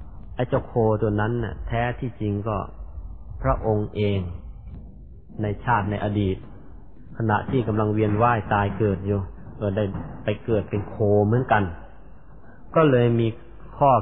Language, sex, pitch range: Thai, male, 100-125 Hz